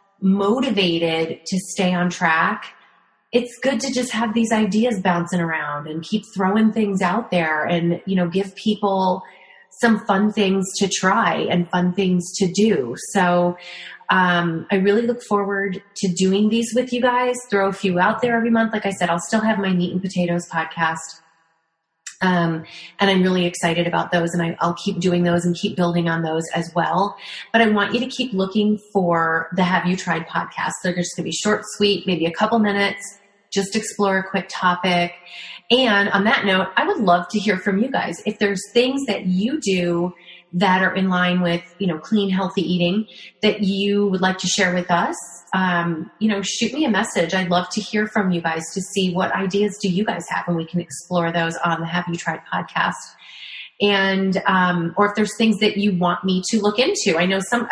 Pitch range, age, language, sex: 175-205 Hz, 30-49, English, female